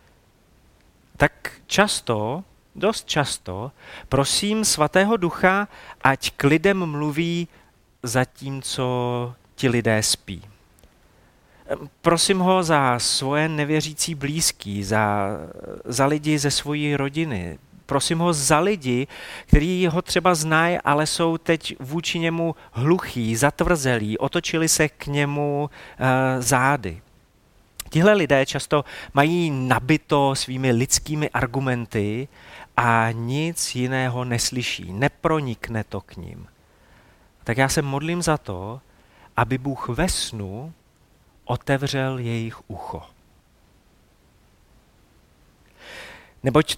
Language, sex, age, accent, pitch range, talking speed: Czech, male, 40-59, native, 115-155 Hz, 100 wpm